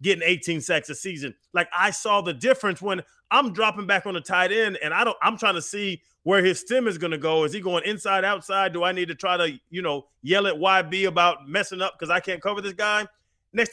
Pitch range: 155-205 Hz